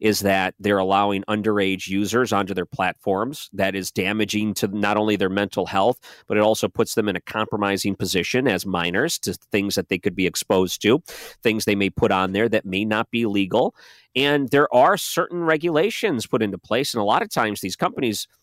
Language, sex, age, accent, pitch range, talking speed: English, male, 40-59, American, 100-130 Hz, 205 wpm